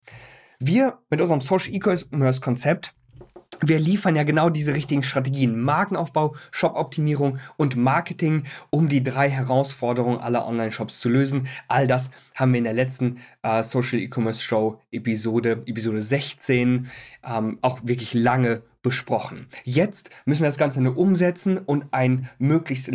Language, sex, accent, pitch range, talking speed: German, male, German, 130-170 Hz, 140 wpm